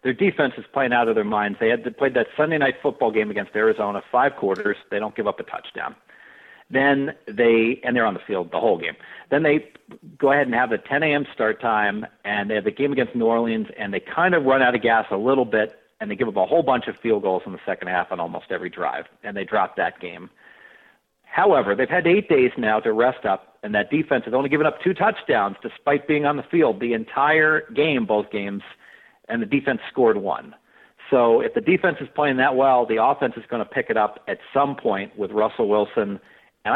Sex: male